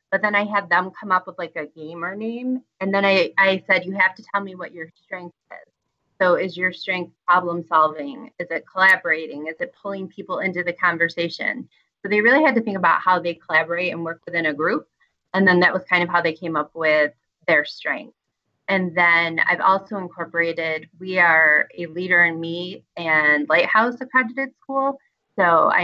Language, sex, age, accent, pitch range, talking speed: English, female, 30-49, American, 160-190 Hz, 200 wpm